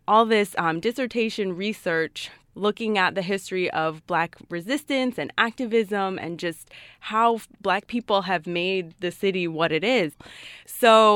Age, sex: 20-39, female